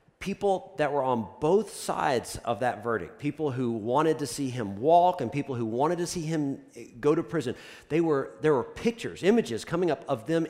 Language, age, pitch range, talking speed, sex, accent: English, 40-59, 130-200 Hz, 205 wpm, male, American